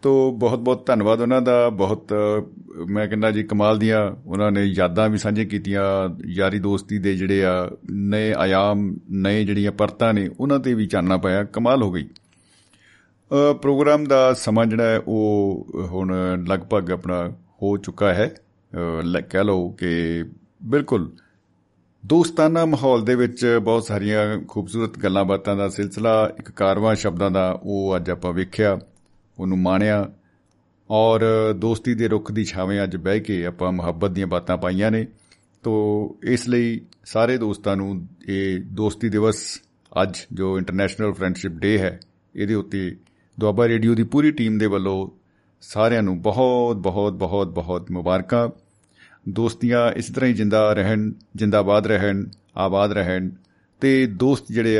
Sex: male